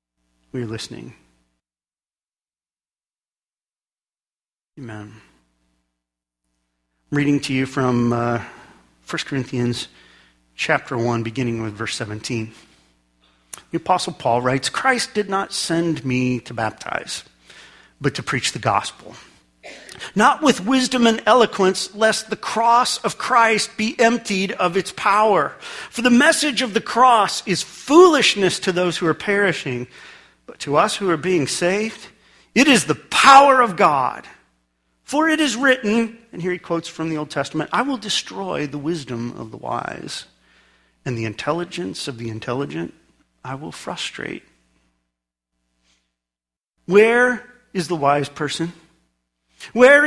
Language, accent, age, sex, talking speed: English, American, 40-59, male, 130 wpm